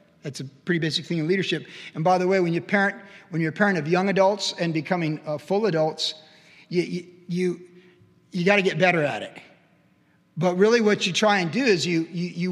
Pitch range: 165-200 Hz